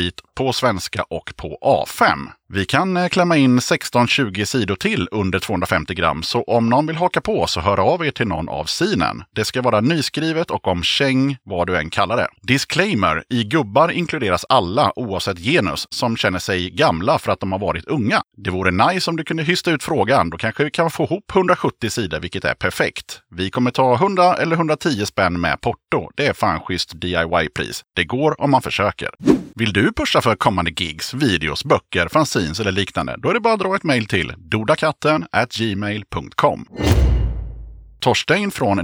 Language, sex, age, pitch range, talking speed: Swedish, male, 30-49, 90-140 Hz, 185 wpm